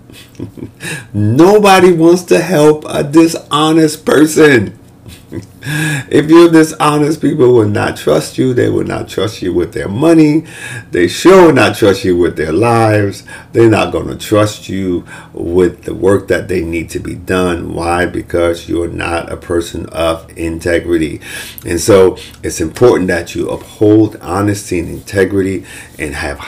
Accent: American